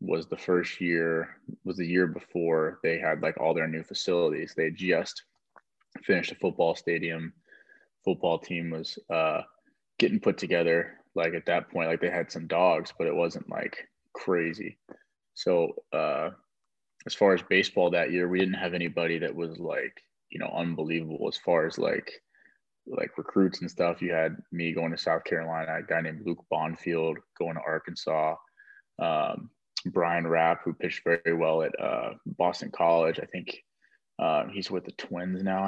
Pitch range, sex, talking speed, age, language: 80-90 Hz, male, 175 wpm, 20-39, English